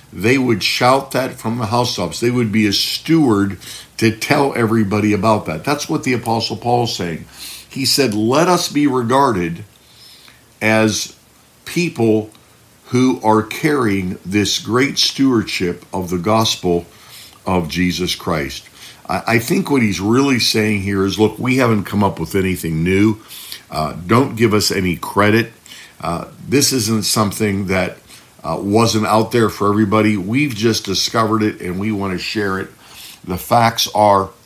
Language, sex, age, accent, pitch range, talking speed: English, male, 50-69, American, 100-125 Hz, 155 wpm